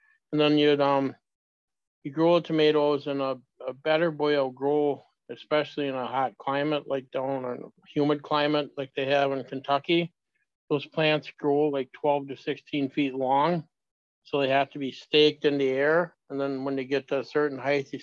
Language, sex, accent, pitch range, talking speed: English, male, American, 130-150 Hz, 185 wpm